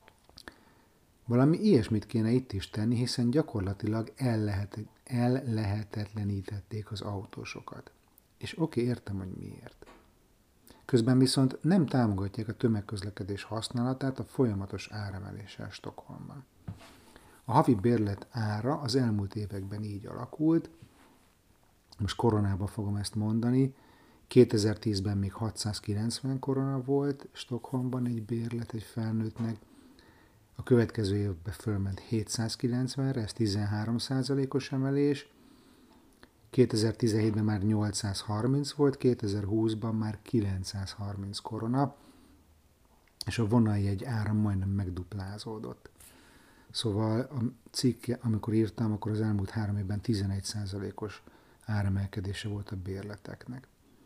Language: Hungarian